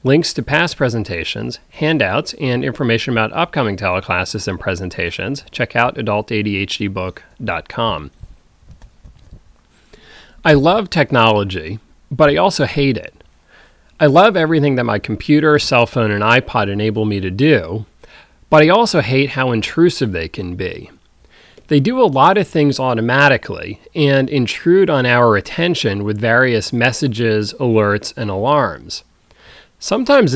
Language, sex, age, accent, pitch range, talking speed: English, male, 30-49, American, 105-140 Hz, 130 wpm